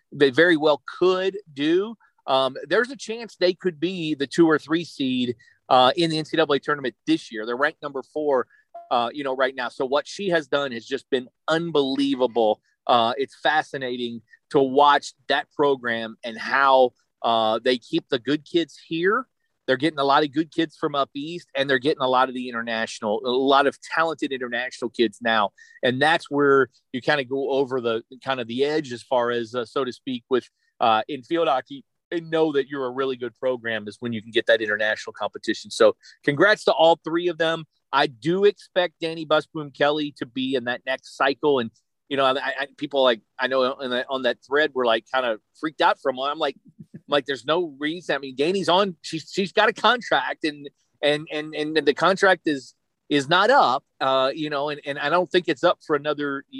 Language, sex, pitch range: English, male, 130-165 Hz